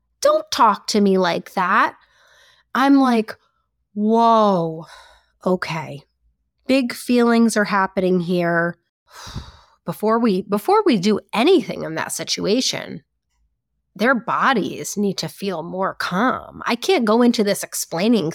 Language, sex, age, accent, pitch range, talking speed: English, female, 30-49, American, 175-230 Hz, 120 wpm